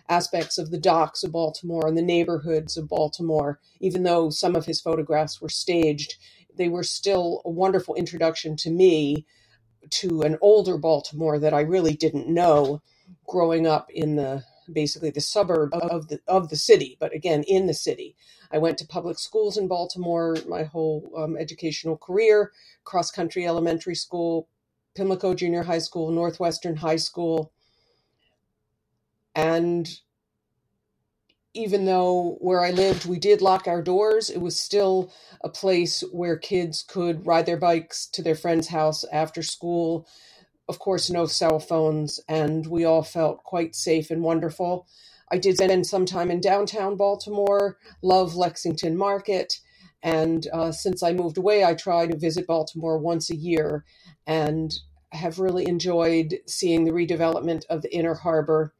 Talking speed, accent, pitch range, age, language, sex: 155 wpm, American, 155-180 Hz, 50-69, English, female